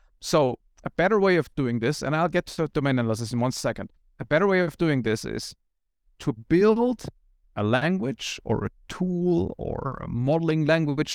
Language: English